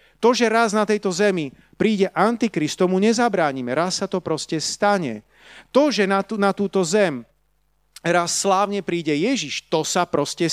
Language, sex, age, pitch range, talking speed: Slovak, male, 40-59, 150-210 Hz, 155 wpm